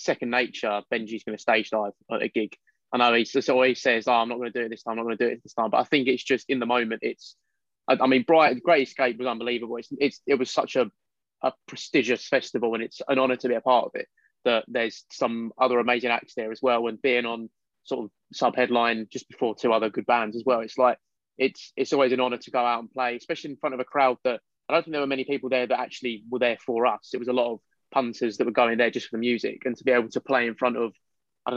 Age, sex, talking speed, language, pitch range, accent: 20-39, male, 285 wpm, English, 120-135 Hz, British